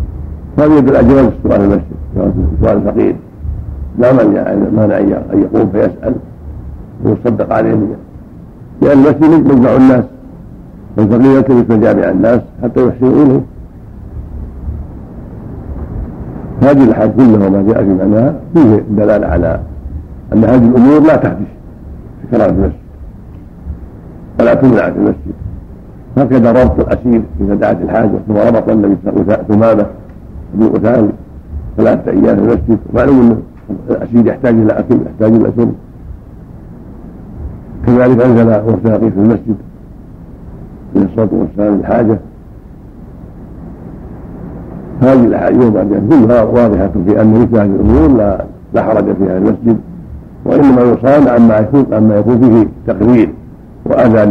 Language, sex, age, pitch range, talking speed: Arabic, male, 60-79, 95-115 Hz, 125 wpm